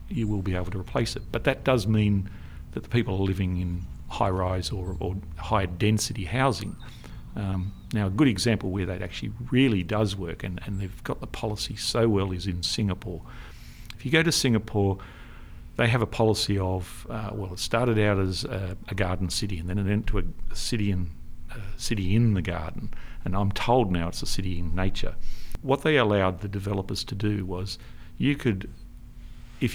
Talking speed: 190 wpm